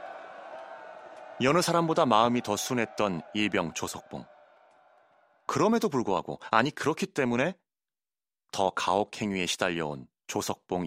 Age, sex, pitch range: 30-49, male, 100-135 Hz